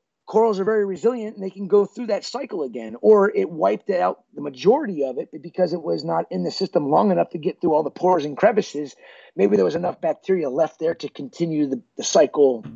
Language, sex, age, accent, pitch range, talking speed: English, male, 30-49, American, 130-190 Hz, 230 wpm